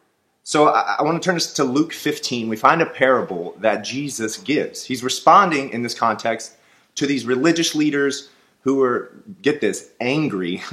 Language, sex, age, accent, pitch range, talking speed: English, male, 30-49, American, 110-145 Hz, 170 wpm